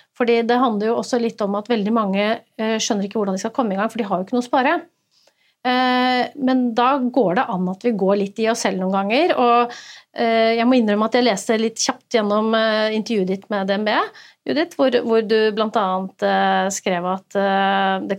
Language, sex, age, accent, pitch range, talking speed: English, female, 30-49, Swedish, 200-245 Hz, 185 wpm